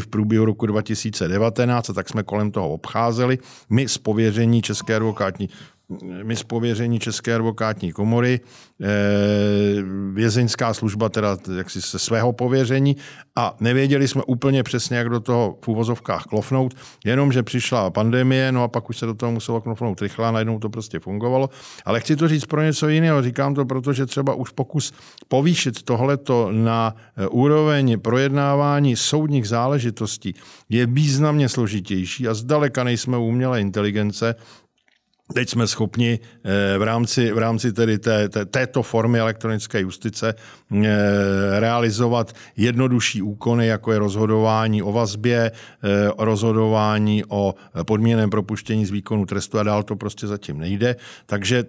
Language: Czech